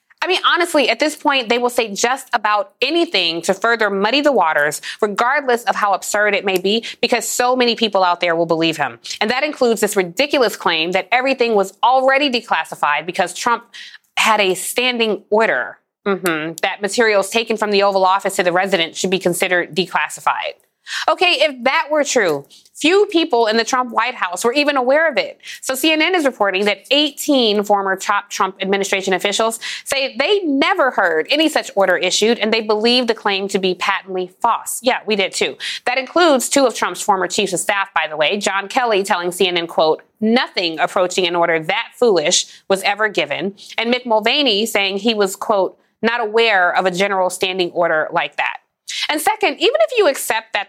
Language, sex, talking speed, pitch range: English, female, 195 wpm, 190-255 Hz